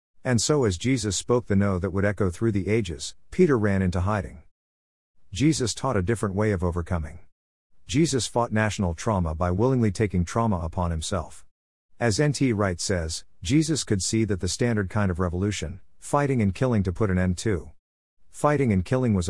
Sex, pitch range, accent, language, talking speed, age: male, 90-115 Hz, American, English, 185 wpm, 50-69